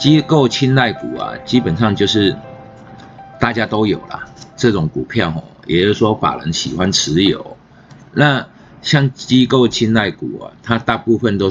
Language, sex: Chinese, male